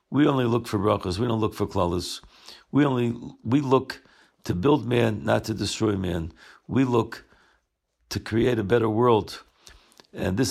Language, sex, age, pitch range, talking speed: English, male, 60-79, 105-120 Hz, 170 wpm